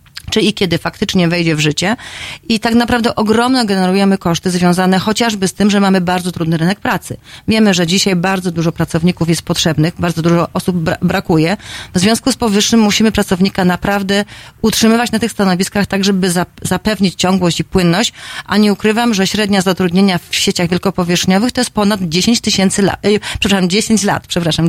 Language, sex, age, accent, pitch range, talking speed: Polish, female, 30-49, native, 180-210 Hz, 180 wpm